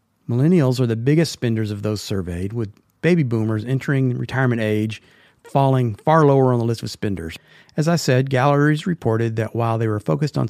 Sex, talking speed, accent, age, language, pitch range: male, 190 wpm, American, 40-59, English, 105-130 Hz